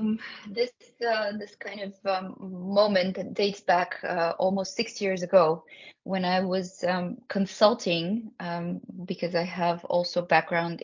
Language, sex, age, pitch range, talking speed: English, female, 20-39, 170-200 Hz, 150 wpm